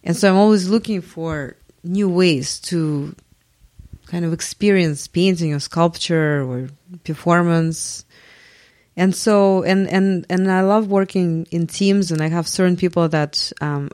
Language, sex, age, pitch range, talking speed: English, female, 30-49, 155-195 Hz, 145 wpm